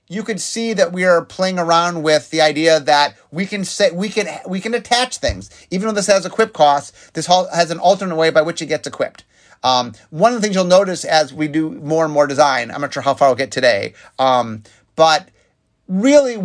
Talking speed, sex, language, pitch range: 225 wpm, male, English, 135-185 Hz